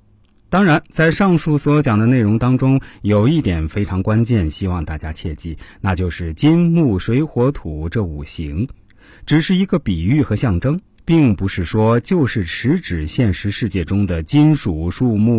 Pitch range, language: 90-140 Hz, Chinese